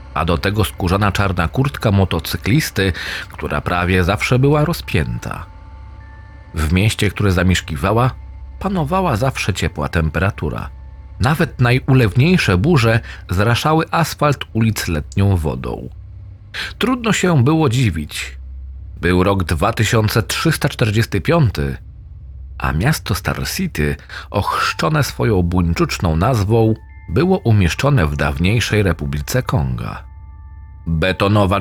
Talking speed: 95 wpm